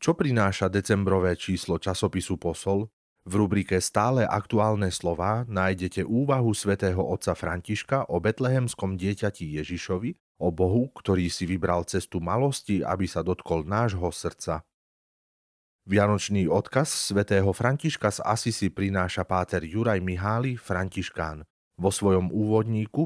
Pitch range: 90-110 Hz